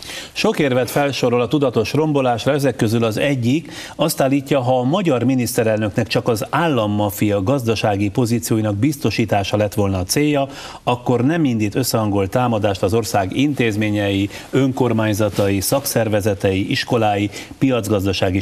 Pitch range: 105-135 Hz